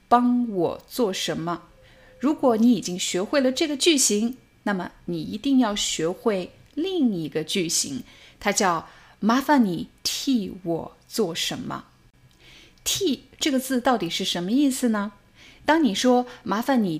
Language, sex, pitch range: Chinese, female, 180-255 Hz